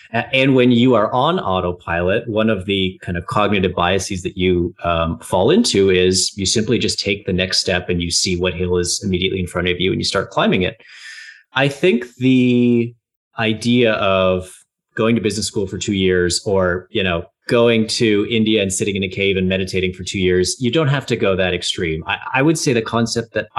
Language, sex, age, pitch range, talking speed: English, male, 30-49, 95-115 Hz, 215 wpm